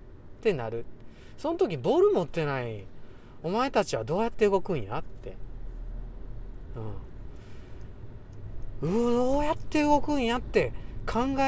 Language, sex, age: Japanese, male, 40-59